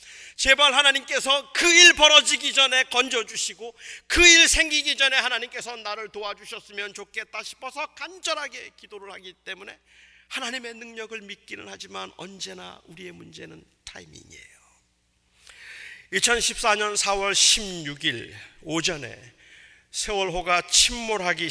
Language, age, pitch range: Korean, 40-59, 170-235 Hz